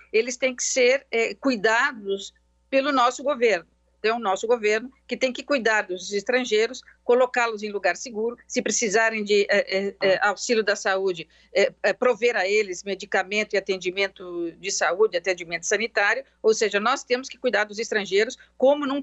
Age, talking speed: 50-69, 165 wpm